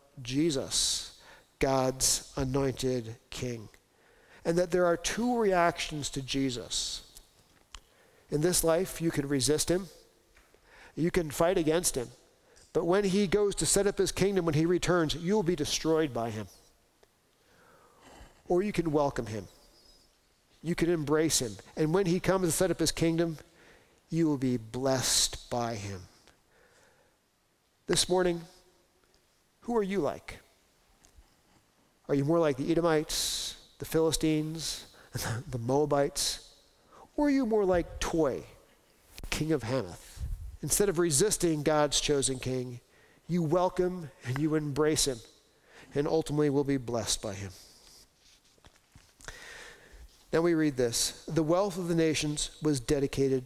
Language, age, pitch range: English, 50-69, 130-175 Hz